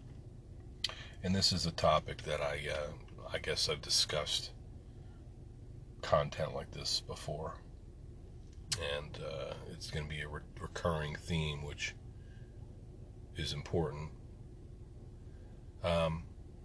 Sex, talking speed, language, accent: male, 110 wpm, English, American